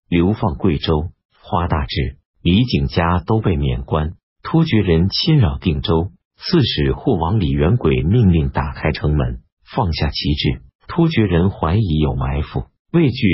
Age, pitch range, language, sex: 50-69, 75-100 Hz, Chinese, male